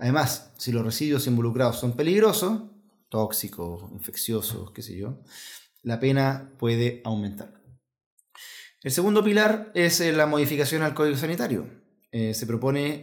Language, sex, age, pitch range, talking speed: Spanish, male, 30-49, 120-150 Hz, 130 wpm